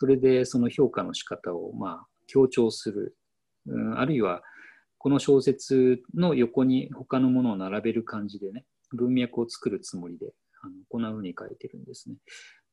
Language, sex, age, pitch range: Japanese, male, 40-59, 115-140 Hz